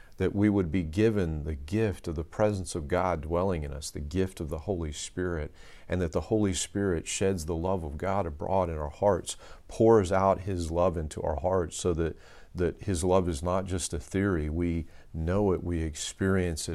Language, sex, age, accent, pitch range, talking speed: English, male, 40-59, American, 75-95 Hz, 205 wpm